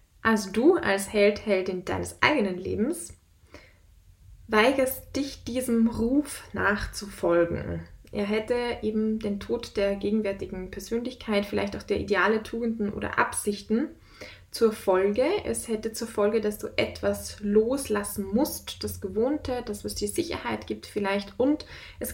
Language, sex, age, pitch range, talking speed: German, female, 20-39, 185-225 Hz, 135 wpm